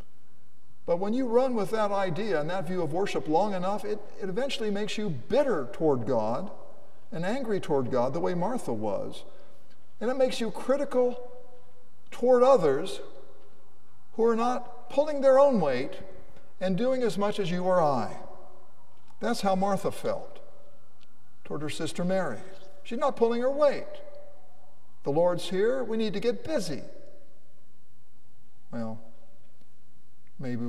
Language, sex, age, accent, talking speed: English, male, 50-69, American, 145 wpm